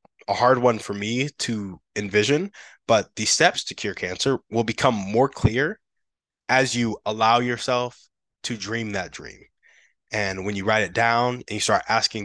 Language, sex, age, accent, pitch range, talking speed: English, male, 20-39, American, 105-130 Hz, 170 wpm